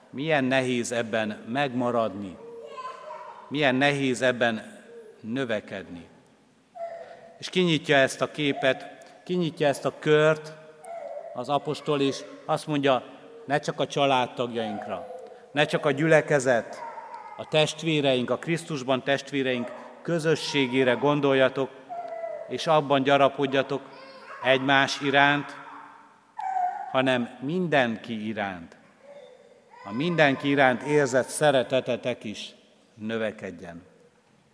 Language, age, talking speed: Hungarian, 60-79, 90 wpm